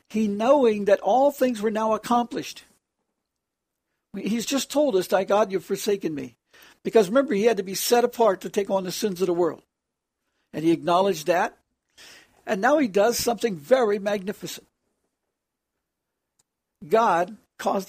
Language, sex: English, male